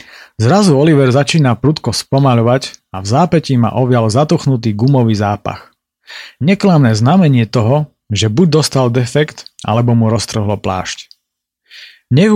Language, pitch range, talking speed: Slovak, 115-145 Hz, 120 wpm